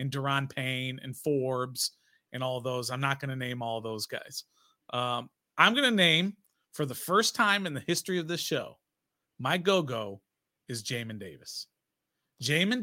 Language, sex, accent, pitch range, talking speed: English, male, American, 125-165 Hz, 175 wpm